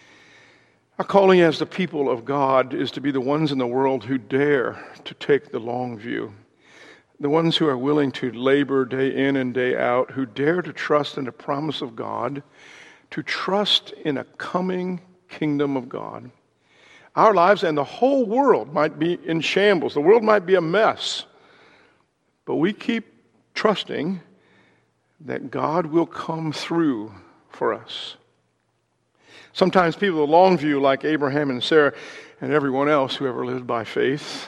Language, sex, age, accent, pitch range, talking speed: English, male, 60-79, American, 135-180 Hz, 165 wpm